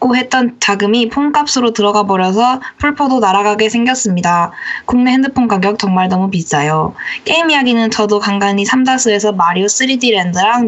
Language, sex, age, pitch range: Korean, female, 20-39, 200-255 Hz